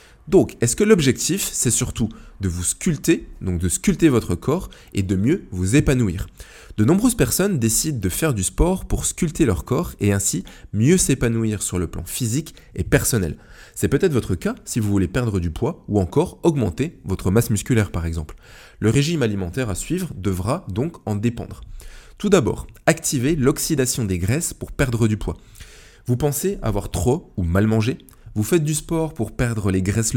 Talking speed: 185 wpm